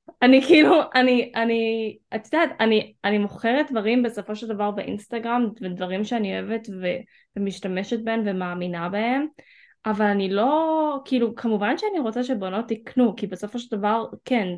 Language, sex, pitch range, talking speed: Hebrew, female, 205-255 Hz, 145 wpm